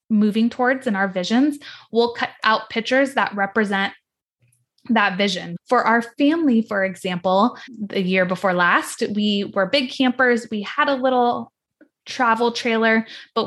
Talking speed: 145 wpm